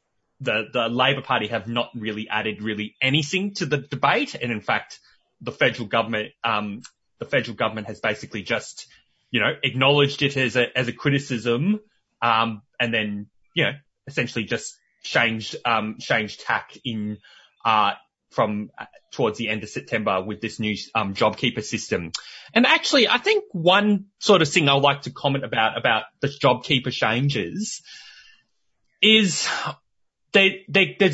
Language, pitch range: English, 110-150 Hz